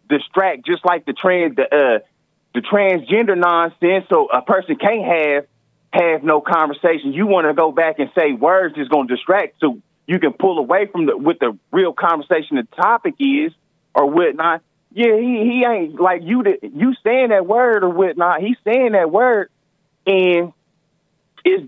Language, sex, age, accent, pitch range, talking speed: English, male, 30-49, American, 170-235 Hz, 175 wpm